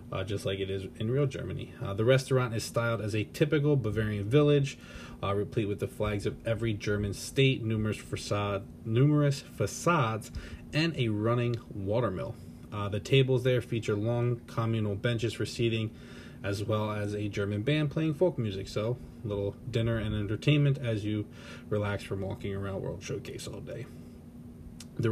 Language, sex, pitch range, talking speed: English, male, 100-120 Hz, 170 wpm